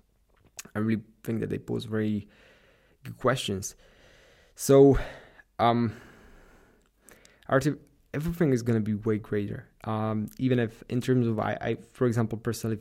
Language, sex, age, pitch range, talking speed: English, male, 20-39, 105-120 Hz, 140 wpm